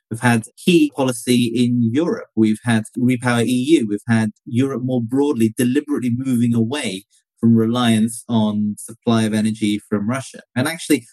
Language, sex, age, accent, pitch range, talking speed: English, male, 30-49, British, 110-130 Hz, 150 wpm